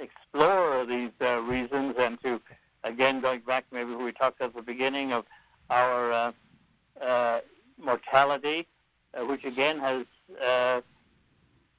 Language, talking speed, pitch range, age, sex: English, 125 wpm, 125-145 Hz, 60-79, male